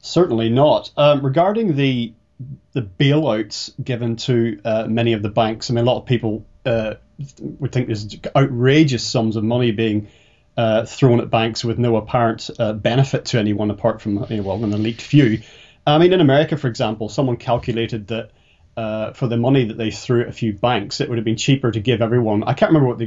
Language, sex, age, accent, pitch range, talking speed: English, male, 30-49, British, 110-135 Hz, 205 wpm